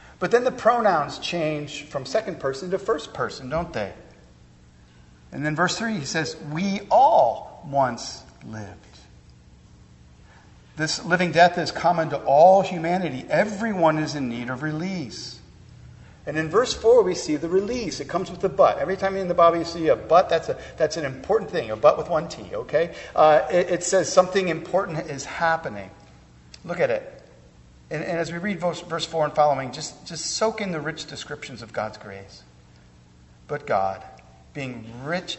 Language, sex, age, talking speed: English, male, 50-69, 180 wpm